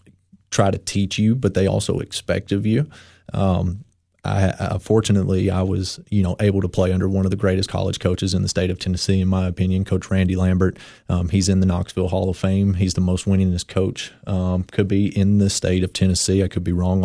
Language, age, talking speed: English, 30-49, 225 wpm